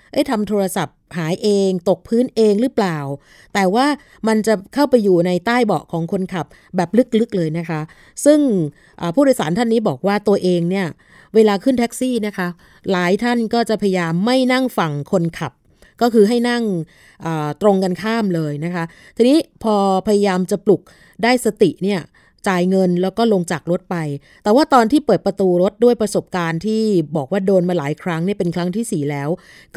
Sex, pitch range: female, 170-220 Hz